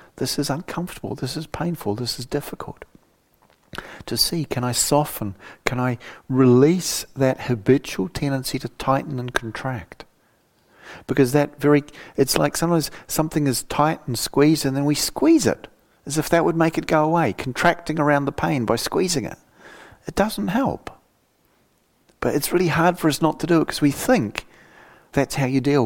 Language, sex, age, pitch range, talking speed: English, male, 50-69, 115-145 Hz, 175 wpm